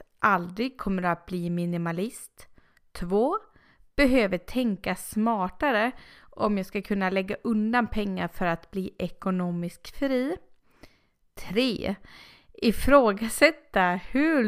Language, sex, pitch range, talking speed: Swedish, female, 200-260 Hz, 105 wpm